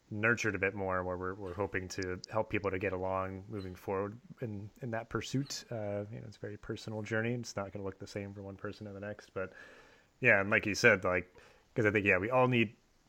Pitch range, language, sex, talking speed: 95-110 Hz, English, male, 250 wpm